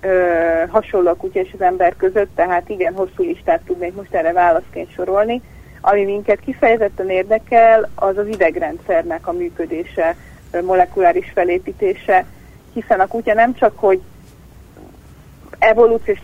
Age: 30-49